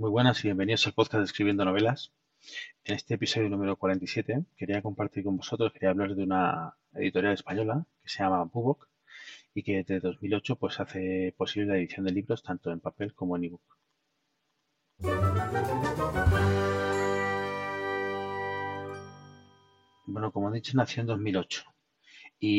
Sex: male